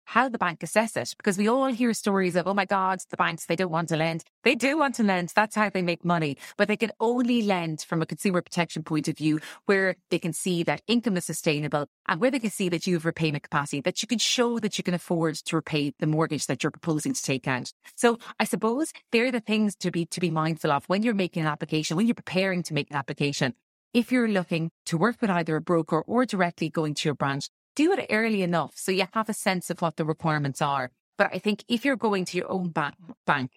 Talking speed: 255 wpm